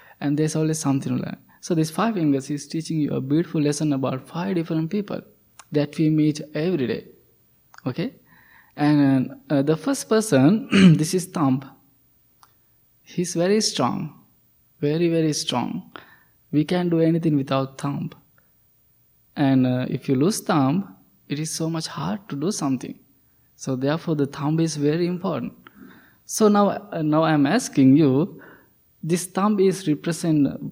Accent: Indian